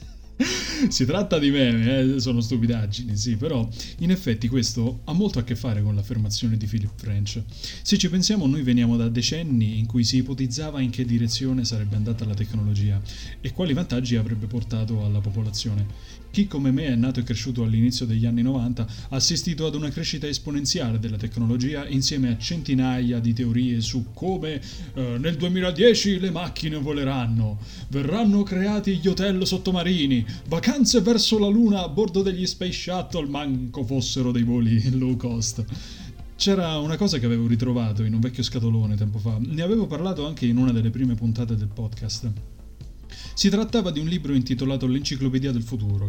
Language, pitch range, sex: Italian, 115-140 Hz, male